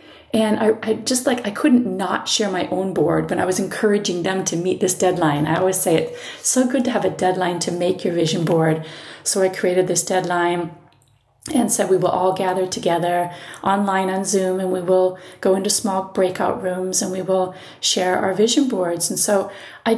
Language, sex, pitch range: English, female, 175-220 Hz